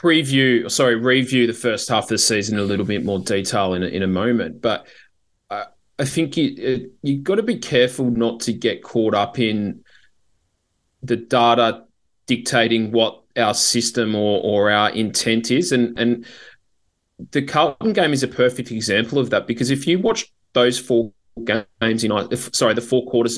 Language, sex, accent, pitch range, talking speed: English, male, Australian, 110-125 Hz, 175 wpm